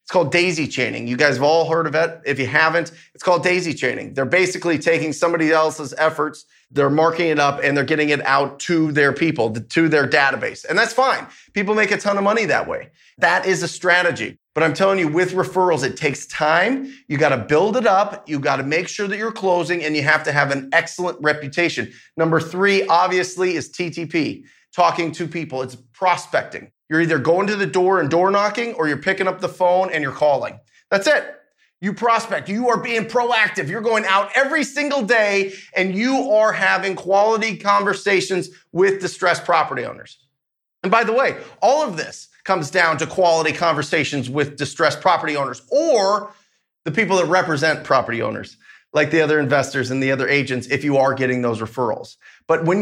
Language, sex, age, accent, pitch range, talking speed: English, male, 30-49, American, 150-195 Hz, 200 wpm